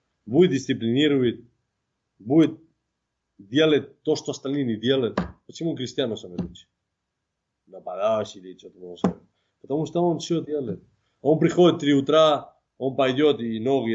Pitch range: 110-140 Hz